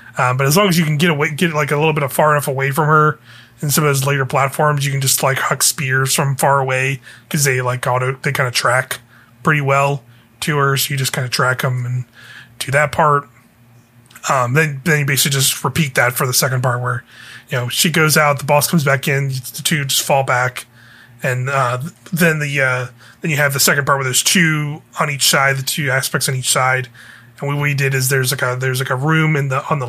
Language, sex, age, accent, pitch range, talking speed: English, male, 30-49, American, 130-155 Hz, 250 wpm